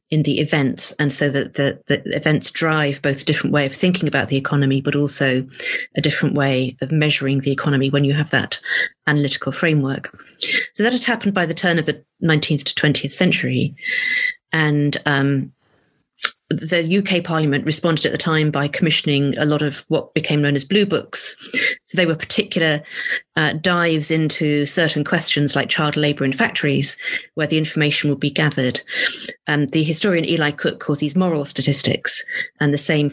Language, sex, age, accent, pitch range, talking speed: English, female, 40-59, British, 140-170 Hz, 180 wpm